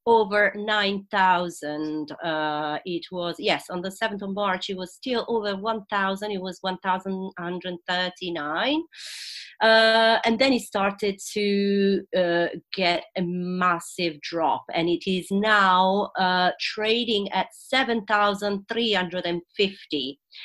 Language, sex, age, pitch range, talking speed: English, female, 40-59, 175-210 Hz, 110 wpm